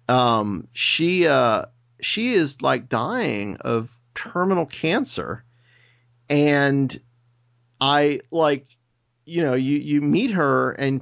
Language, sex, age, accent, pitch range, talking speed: English, male, 40-59, American, 120-145 Hz, 110 wpm